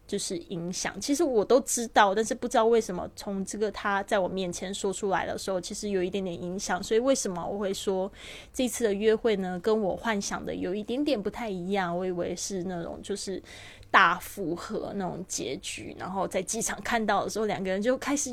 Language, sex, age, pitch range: Chinese, female, 20-39, 185-225 Hz